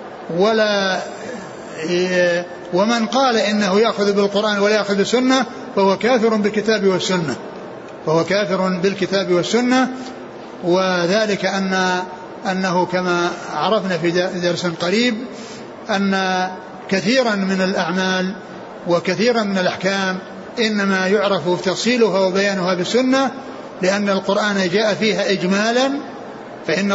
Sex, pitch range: male, 190-235 Hz